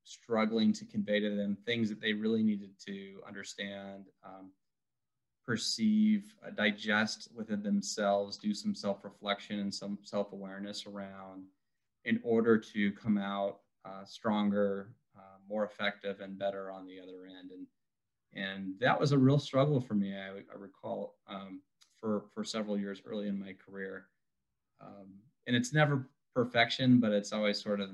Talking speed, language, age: 155 wpm, English, 20-39